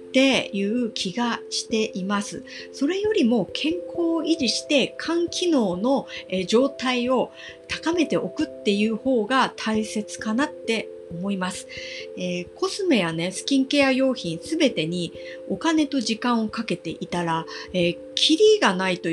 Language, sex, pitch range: Japanese, female, 180-290 Hz